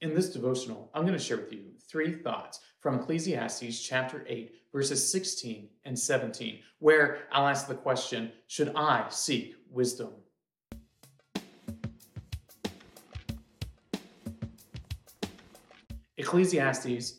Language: English